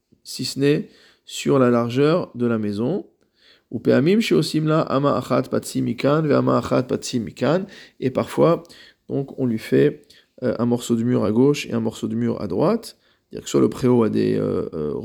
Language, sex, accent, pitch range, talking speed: French, male, French, 115-140 Hz, 150 wpm